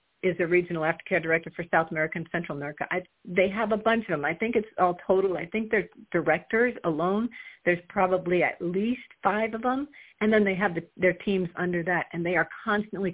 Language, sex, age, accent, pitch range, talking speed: English, female, 50-69, American, 170-195 Hz, 220 wpm